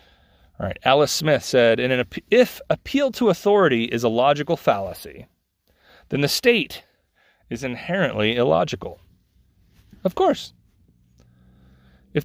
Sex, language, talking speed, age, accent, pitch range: male, English, 105 wpm, 30-49, American, 105-170 Hz